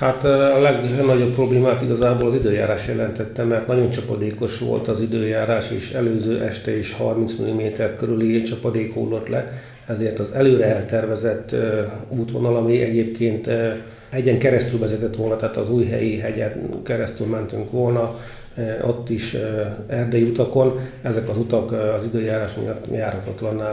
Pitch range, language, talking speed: 110-120 Hz, Hungarian, 135 wpm